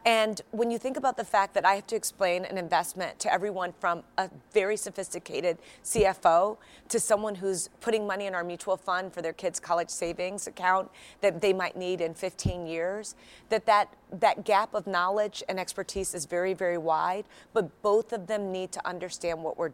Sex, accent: female, American